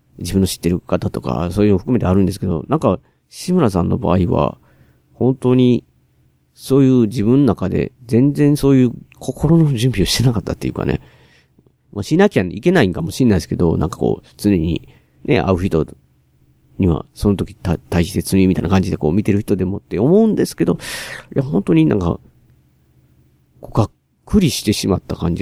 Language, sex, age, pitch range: Japanese, male, 40-59, 90-125 Hz